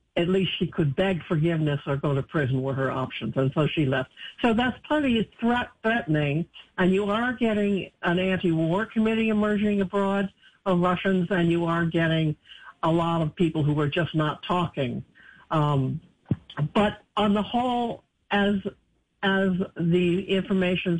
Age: 60-79